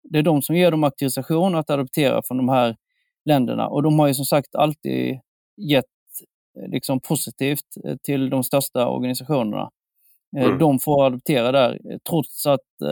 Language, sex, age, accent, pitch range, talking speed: Swedish, male, 30-49, native, 125-150 Hz, 155 wpm